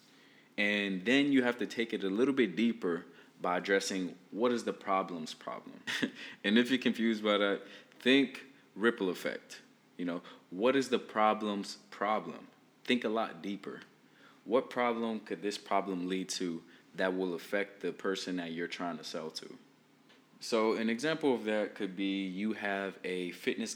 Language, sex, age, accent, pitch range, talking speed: English, male, 20-39, American, 95-115 Hz, 170 wpm